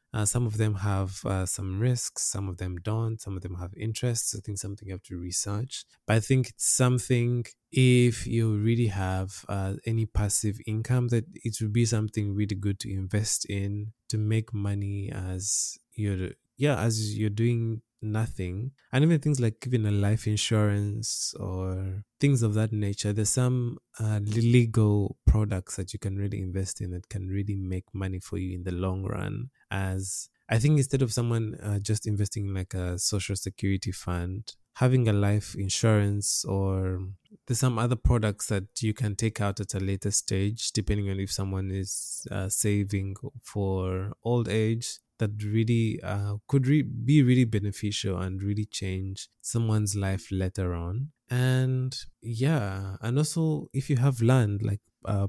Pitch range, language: 95-120 Hz, English